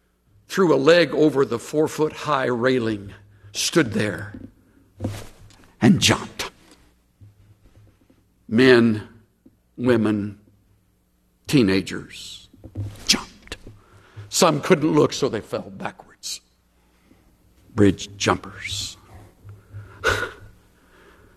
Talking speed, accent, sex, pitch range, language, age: 65 wpm, American, male, 100-130 Hz, English, 60-79